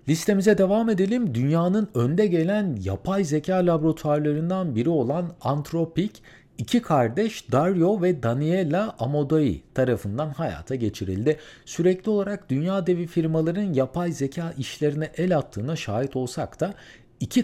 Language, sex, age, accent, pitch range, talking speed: Turkish, male, 50-69, native, 115-180 Hz, 120 wpm